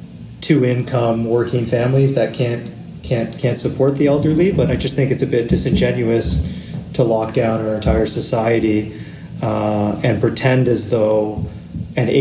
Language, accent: English, American